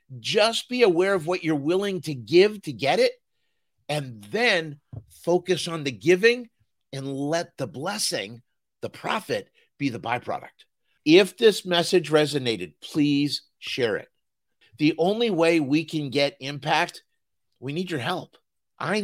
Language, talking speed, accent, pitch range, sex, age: English, 145 wpm, American, 150-205 Hz, male, 50-69